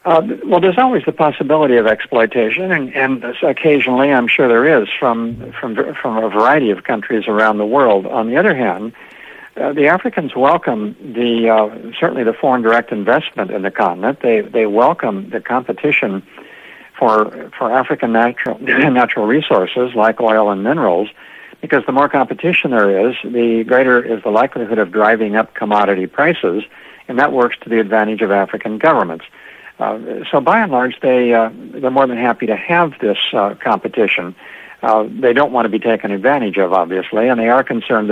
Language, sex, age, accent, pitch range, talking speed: English, male, 60-79, American, 105-120 Hz, 175 wpm